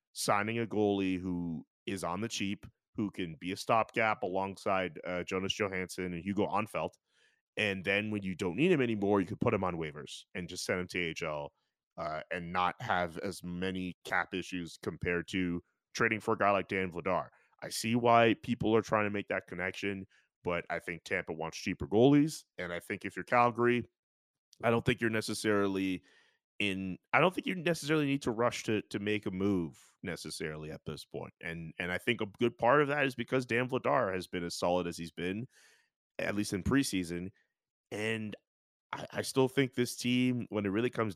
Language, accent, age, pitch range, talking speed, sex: English, American, 30-49, 90-115 Hz, 205 wpm, male